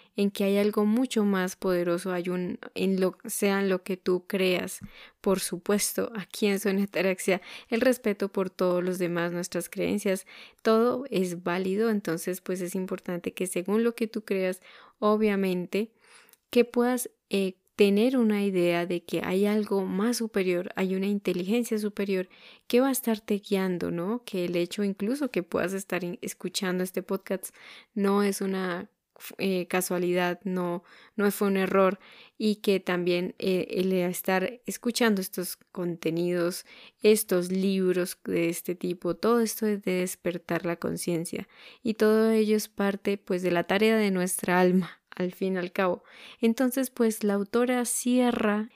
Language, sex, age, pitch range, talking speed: Spanish, female, 10-29, 180-220 Hz, 160 wpm